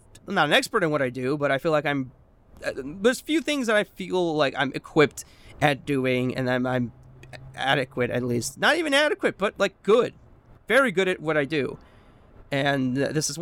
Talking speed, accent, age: 205 wpm, American, 30-49